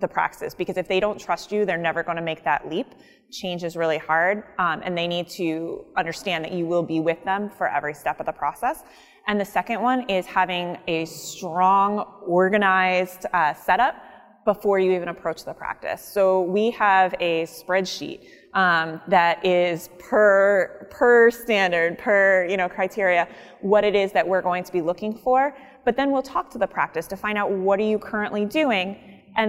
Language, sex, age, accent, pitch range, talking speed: English, female, 20-39, American, 170-205 Hz, 195 wpm